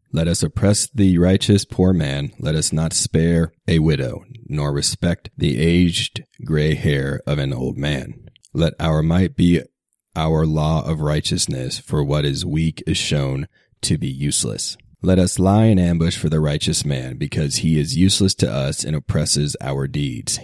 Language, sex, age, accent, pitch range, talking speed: English, male, 30-49, American, 70-85 Hz, 175 wpm